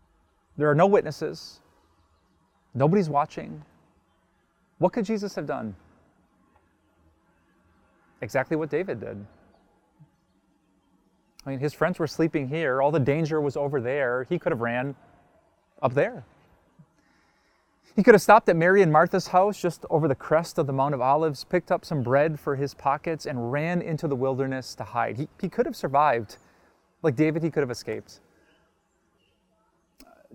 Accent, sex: American, male